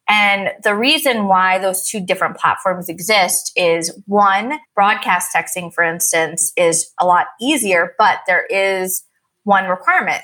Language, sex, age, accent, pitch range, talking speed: English, female, 20-39, American, 180-230 Hz, 140 wpm